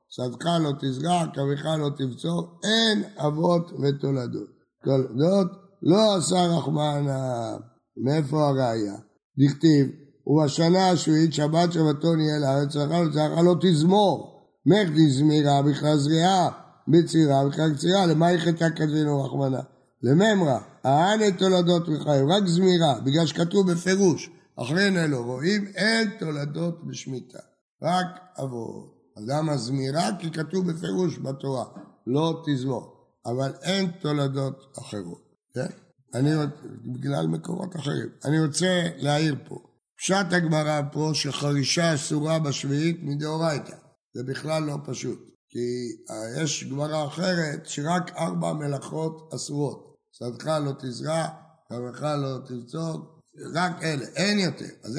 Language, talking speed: Hebrew, 120 wpm